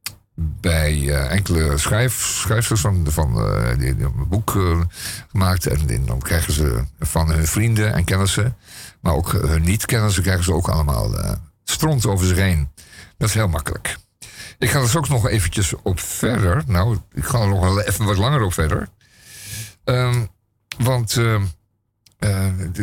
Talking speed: 160 wpm